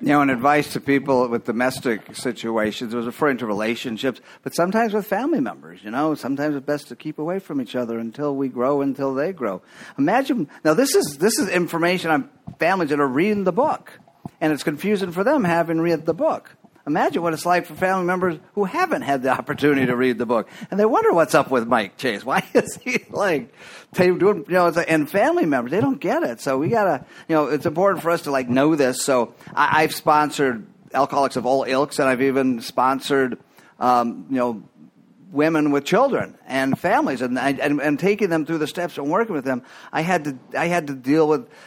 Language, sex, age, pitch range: English, male, 50-69, 130-170 Hz